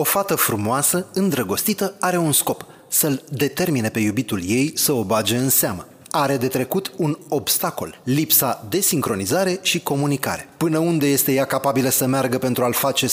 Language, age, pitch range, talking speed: Romanian, 30-49, 130-165 Hz, 170 wpm